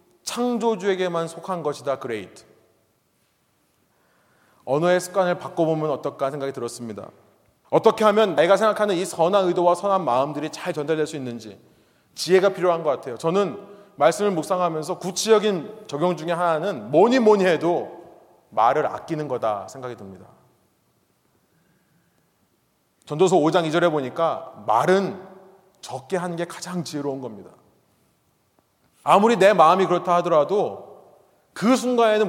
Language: Korean